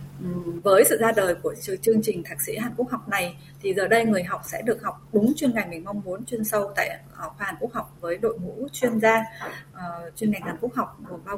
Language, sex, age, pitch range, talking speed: Vietnamese, female, 20-39, 170-225 Hz, 245 wpm